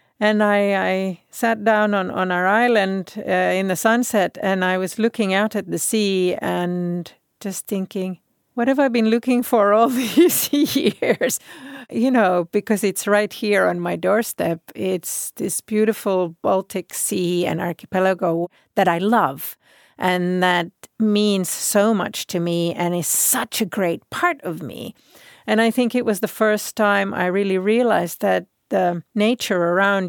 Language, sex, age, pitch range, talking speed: Finnish, female, 50-69, 175-215 Hz, 165 wpm